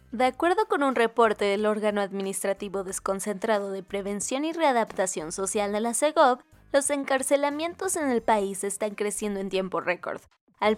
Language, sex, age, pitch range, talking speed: Spanish, female, 20-39, 200-270 Hz, 155 wpm